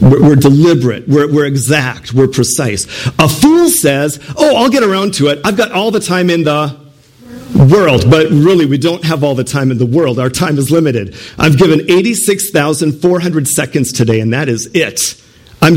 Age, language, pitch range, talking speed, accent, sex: 50-69, English, 130-180 Hz, 185 wpm, American, male